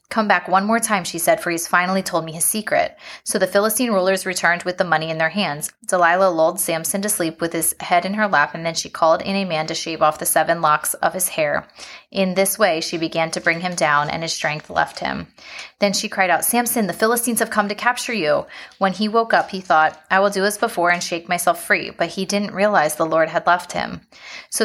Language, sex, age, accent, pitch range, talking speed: English, female, 20-39, American, 165-200 Hz, 250 wpm